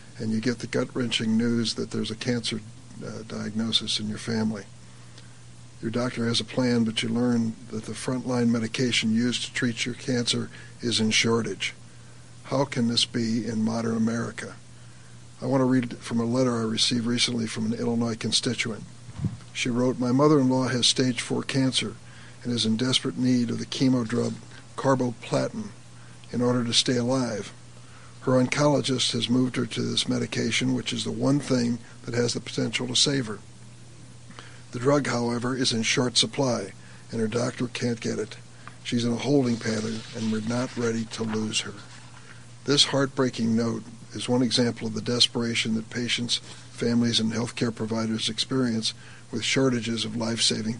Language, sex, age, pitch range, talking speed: English, male, 60-79, 110-125 Hz, 170 wpm